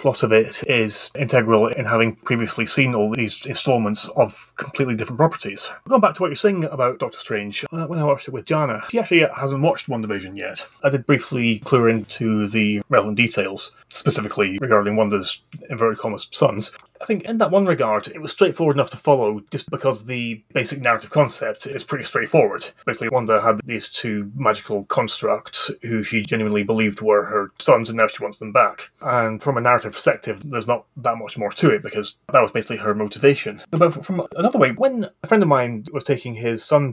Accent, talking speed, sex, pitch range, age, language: British, 200 wpm, male, 110-145 Hz, 30-49, English